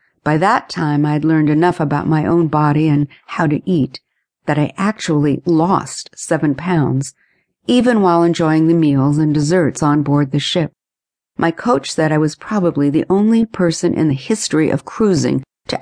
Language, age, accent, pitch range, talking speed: English, 50-69, American, 145-180 Hz, 180 wpm